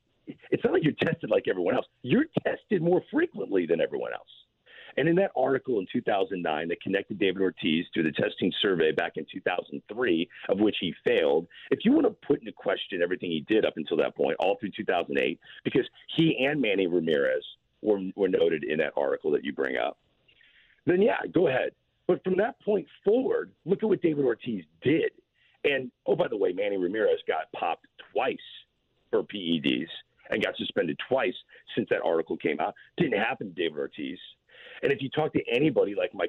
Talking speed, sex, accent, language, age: 195 wpm, male, American, English, 50-69